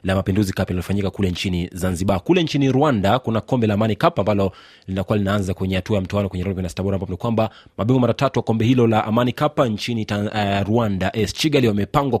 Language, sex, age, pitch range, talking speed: Swahili, male, 30-49, 95-120 Hz, 215 wpm